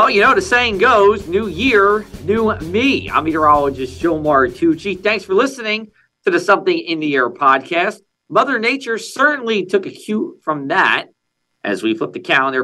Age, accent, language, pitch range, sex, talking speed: 40-59, American, English, 135-220 Hz, male, 175 wpm